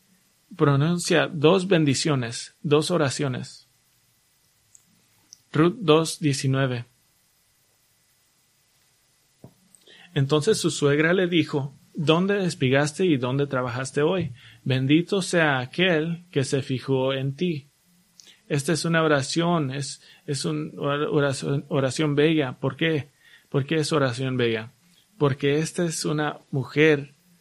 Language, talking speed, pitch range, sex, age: English, 105 wpm, 135-170 Hz, male, 30-49